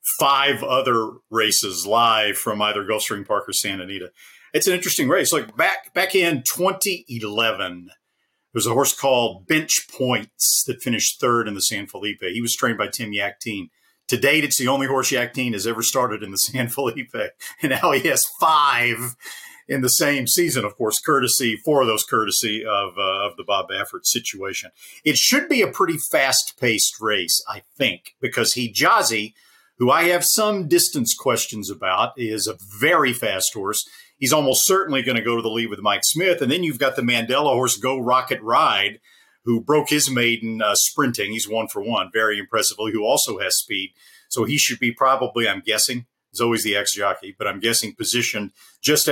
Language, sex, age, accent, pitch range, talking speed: English, male, 50-69, American, 110-135 Hz, 190 wpm